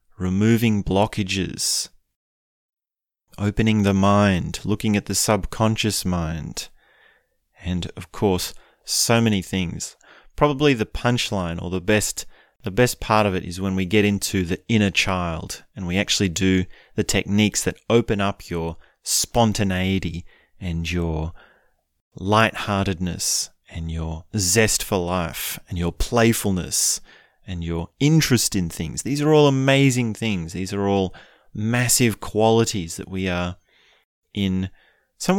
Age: 30-49